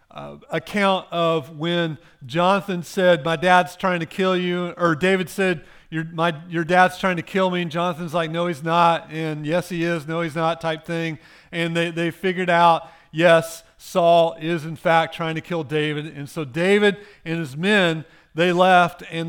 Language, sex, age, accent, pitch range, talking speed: English, male, 40-59, American, 160-185 Hz, 185 wpm